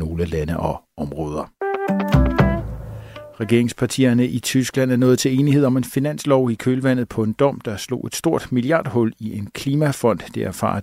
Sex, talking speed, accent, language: male, 160 wpm, native, Danish